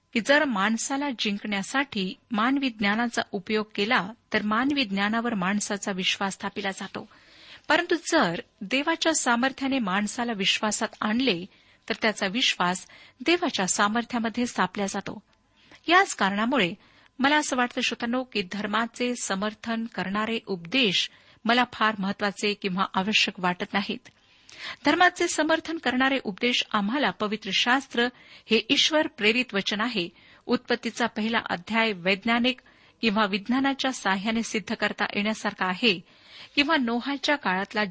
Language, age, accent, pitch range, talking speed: Marathi, 50-69, native, 205-260 Hz, 110 wpm